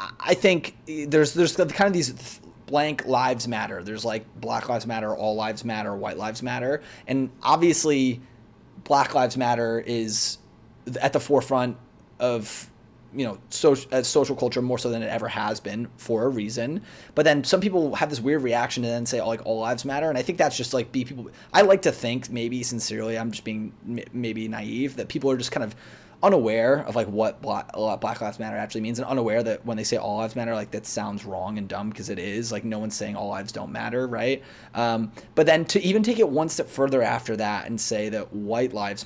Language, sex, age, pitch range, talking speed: English, male, 30-49, 110-135 Hz, 220 wpm